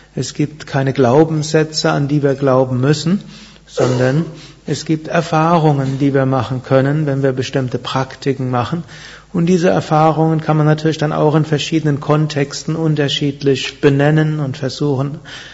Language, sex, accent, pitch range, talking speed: German, male, German, 135-155 Hz, 145 wpm